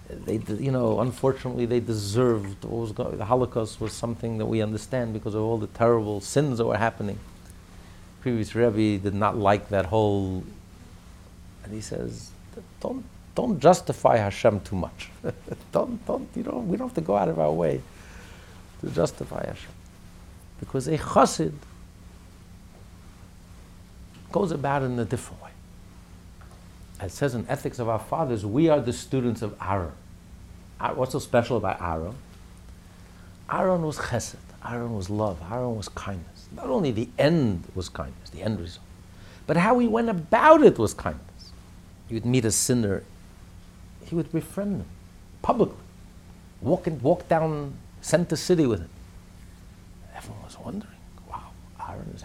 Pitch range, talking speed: 90-120 Hz, 155 wpm